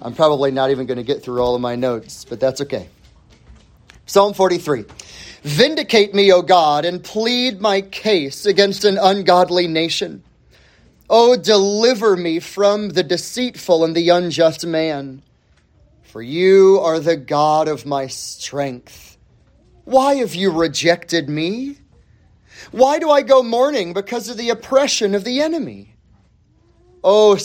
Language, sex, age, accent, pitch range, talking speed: English, male, 30-49, American, 145-225 Hz, 140 wpm